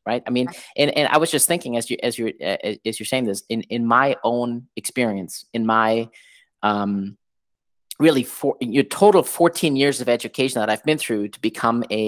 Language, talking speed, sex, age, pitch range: English, 210 wpm, male, 30-49, 110-145 Hz